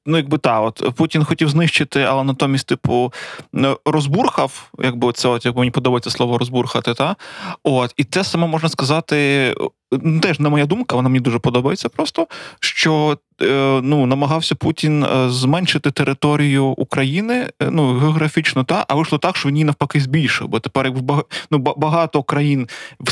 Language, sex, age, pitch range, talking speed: Ukrainian, male, 20-39, 130-160 Hz, 160 wpm